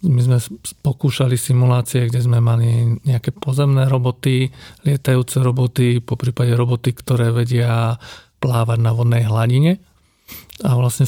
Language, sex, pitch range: Slovak, male, 120-135 Hz